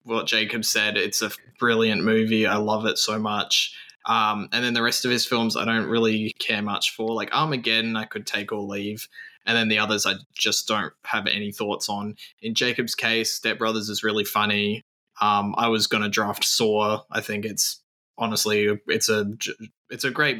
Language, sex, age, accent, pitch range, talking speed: English, male, 20-39, Australian, 105-120 Hz, 195 wpm